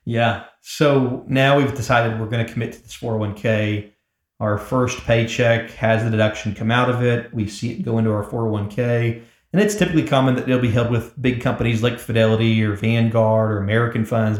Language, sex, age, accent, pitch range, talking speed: English, male, 40-59, American, 110-125 Hz, 200 wpm